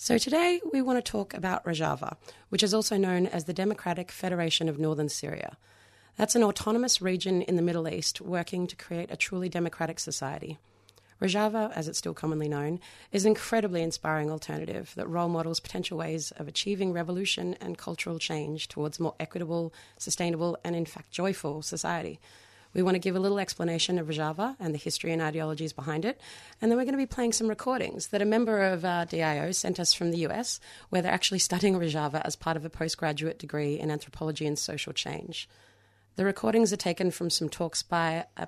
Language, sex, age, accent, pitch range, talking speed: English, female, 30-49, Australian, 155-185 Hz, 195 wpm